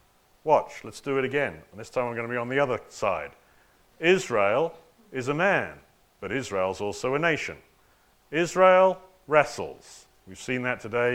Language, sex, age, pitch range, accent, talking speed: English, male, 40-59, 130-185 Hz, British, 165 wpm